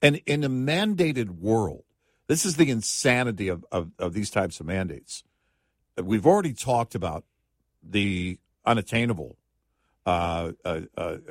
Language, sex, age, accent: English, male, 50-69, American